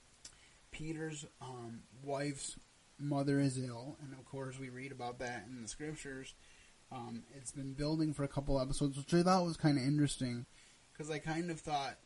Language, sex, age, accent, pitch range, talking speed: English, male, 20-39, American, 125-140 Hz, 180 wpm